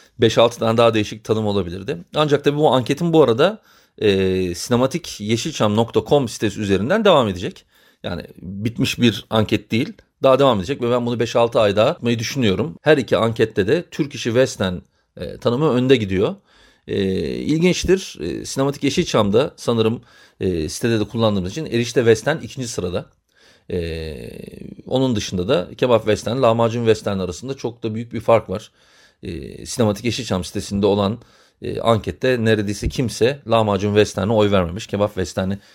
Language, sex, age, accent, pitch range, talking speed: Turkish, male, 40-59, native, 105-130 Hz, 150 wpm